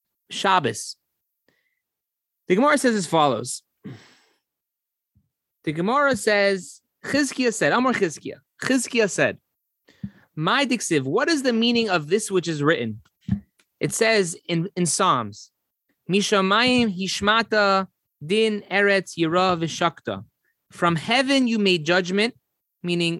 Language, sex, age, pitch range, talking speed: English, male, 30-49, 170-225 Hz, 110 wpm